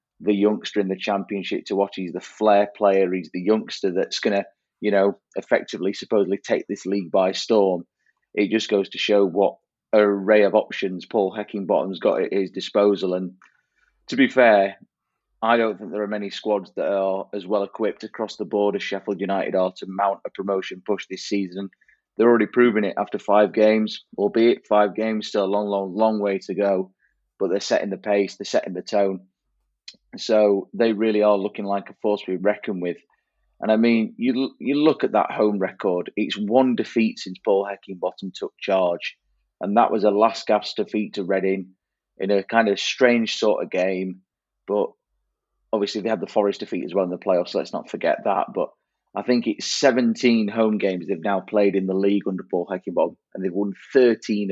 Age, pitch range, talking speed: 30-49, 95-105 Hz, 200 wpm